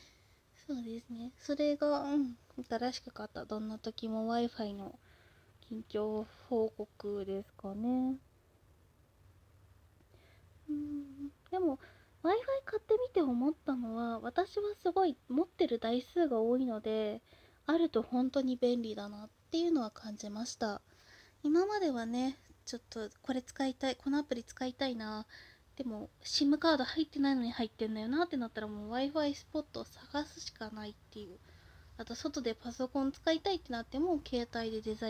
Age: 20-39